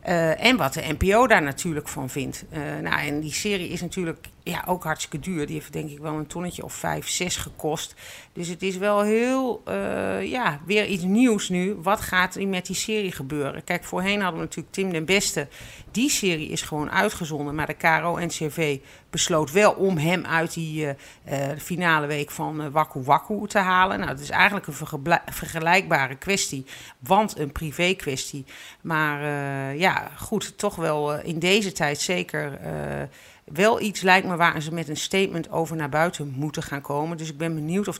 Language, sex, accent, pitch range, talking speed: Dutch, female, Dutch, 145-190 Hz, 195 wpm